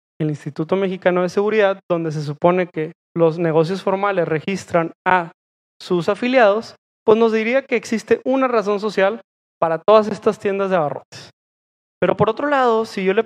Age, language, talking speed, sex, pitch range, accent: 20-39, Spanish, 165 wpm, male, 170-225 Hz, Mexican